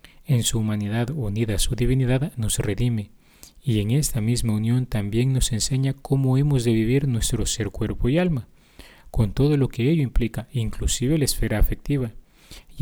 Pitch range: 105-125 Hz